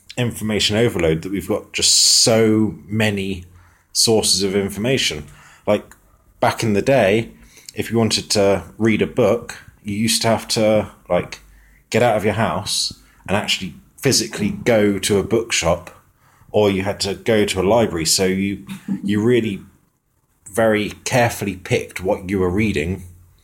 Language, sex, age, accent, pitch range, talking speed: English, male, 30-49, British, 95-110 Hz, 155 wpm